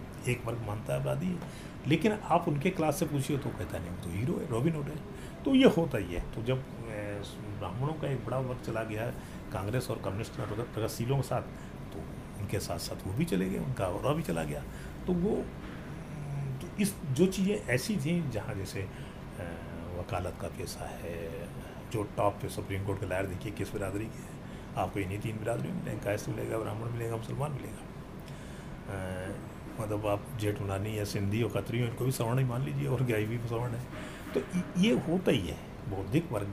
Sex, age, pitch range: male, 40-59, 100-145 Hz